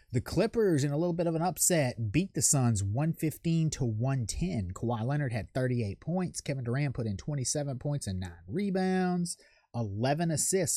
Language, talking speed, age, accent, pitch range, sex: English, 175 wpm, 30-49, American, 115-155 Hz, male